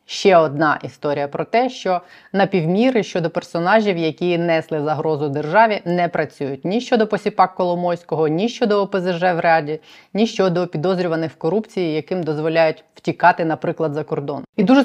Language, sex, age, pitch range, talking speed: Ukrainian, female, 20-39, 150-190 Hz, 150 wpm